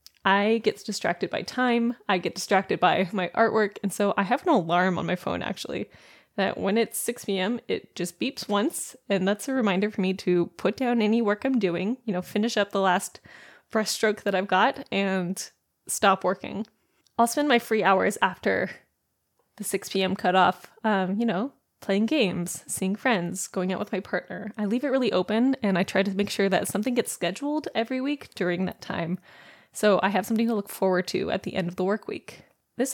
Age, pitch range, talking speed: 20-39, 190-230 Hz, 205 wpm